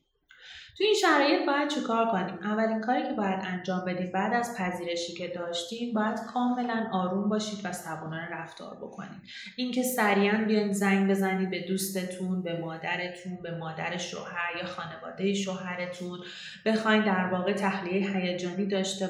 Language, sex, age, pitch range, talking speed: Persian, female, 30-49, 180-210 Hz, 145 wpm